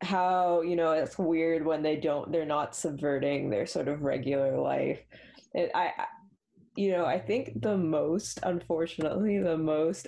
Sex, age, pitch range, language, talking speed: female, 20-39, 145-180 Hz, English, 160 wpm